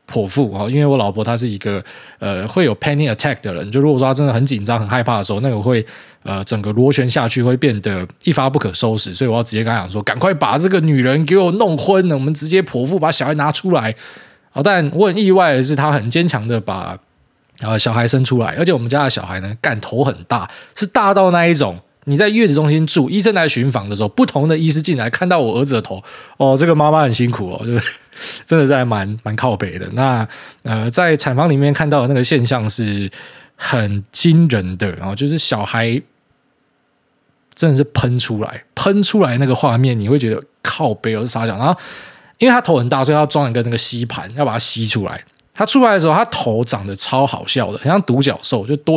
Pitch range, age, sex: 110-150 Hz, 20-39, male